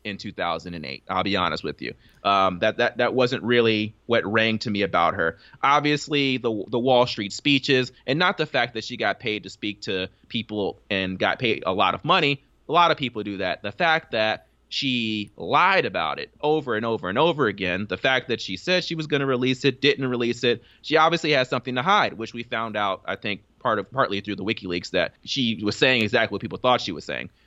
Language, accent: English, American